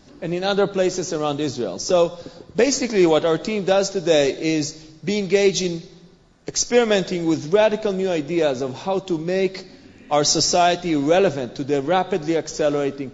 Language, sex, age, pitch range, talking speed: English, male, 40-59, 145-185 Hz, 150 wpm